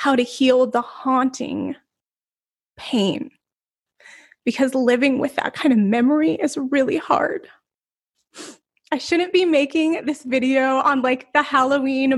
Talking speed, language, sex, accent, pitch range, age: 130 wpm, English, female, American, 215-265 Hz, 20-39